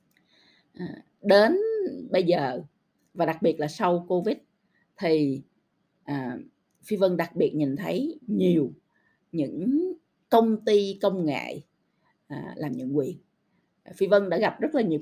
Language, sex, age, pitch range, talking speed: Vietnamese, female, 20-39, 155-220 Hz, 145 wpm